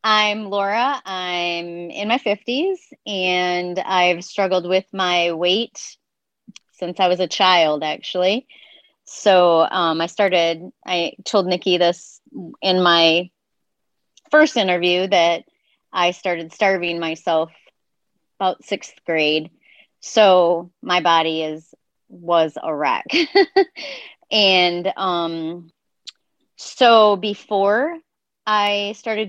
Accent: American